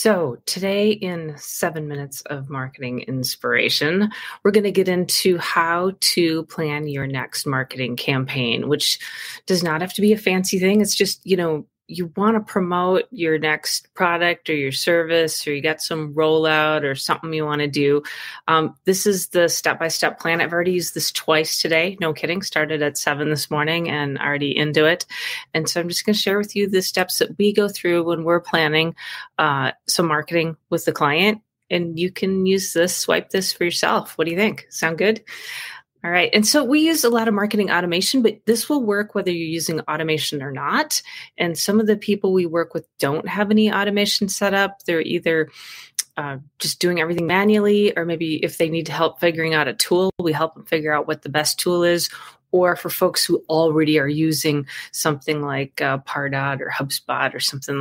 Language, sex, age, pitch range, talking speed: English, female, 30-49, 155-190 Hz, 200 wpm